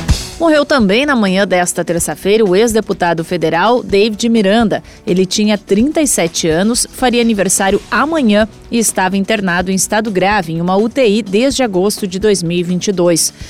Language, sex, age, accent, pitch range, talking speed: Portuguese, female, 30-49, Brazilian, 185-235 Hz, 140 wpm